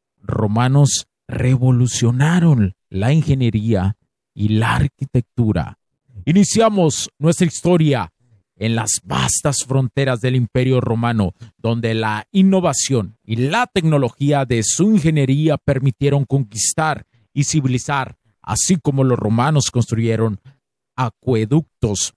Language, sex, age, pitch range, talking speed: Spanish, male, 40-59, 115-155 Hz, 95 wpm